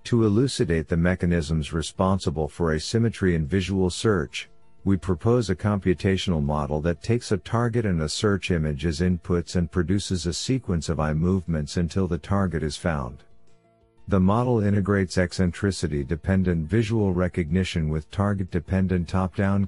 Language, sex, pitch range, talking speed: English, male, 85-105 Hz, 140 wpm